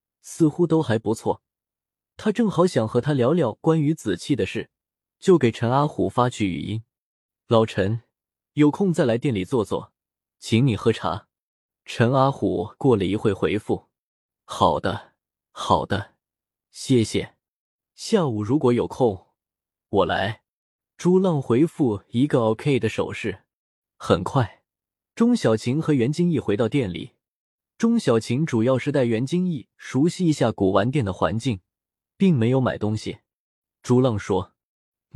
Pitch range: 110-160 Hz